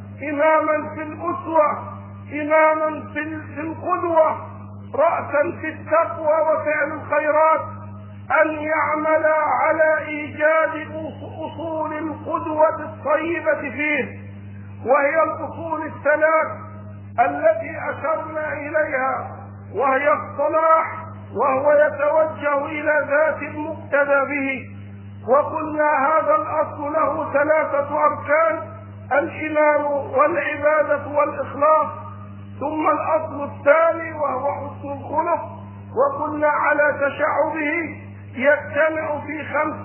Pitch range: 270-310 Hz